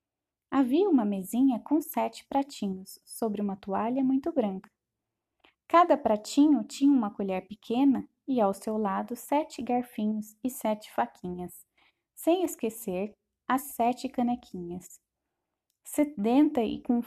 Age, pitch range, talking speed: 20-39, 215-280 Hz, 120 wpm